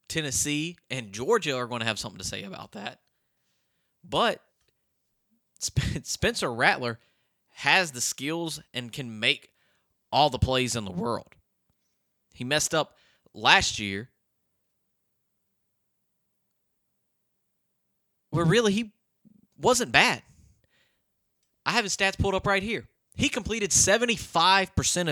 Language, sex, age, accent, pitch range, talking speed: English, male, 20-39, American, 110-160 Hz, 115 wpm